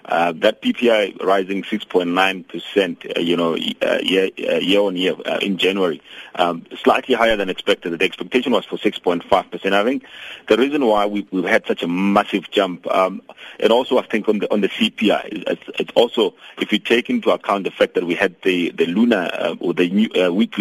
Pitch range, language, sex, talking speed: 90-110 Hz, English, male, 210 wpm